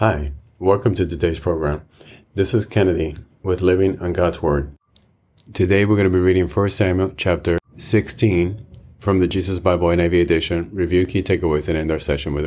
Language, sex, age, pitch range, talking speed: English, male, 40-59, 80-95 Hz, 180 wpm